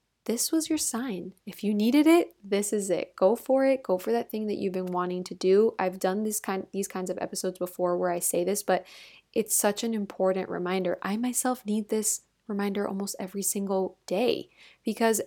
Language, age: English, 20-39